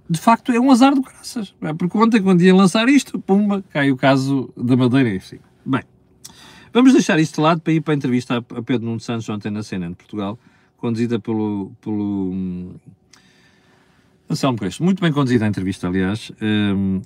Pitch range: 130-190 Hz